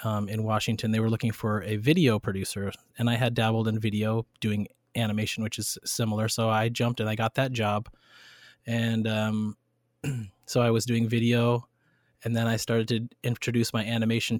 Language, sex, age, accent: English, male, 20-39, American